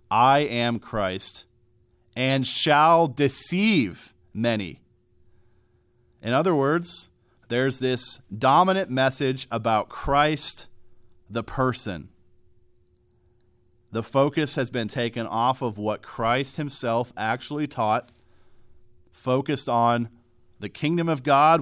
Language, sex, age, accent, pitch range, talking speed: English, male, 40-59, American, 110-130 Hz, 100 wpm